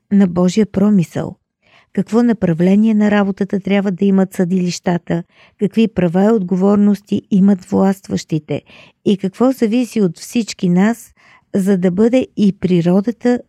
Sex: female